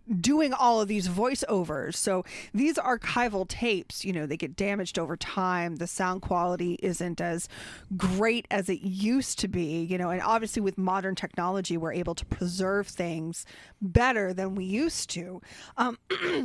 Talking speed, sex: 165 wpm, female